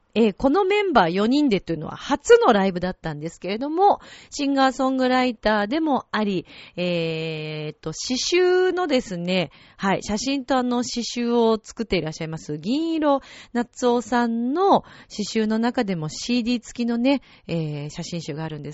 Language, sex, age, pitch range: Japanese, female, 40-59, 170-265 Hz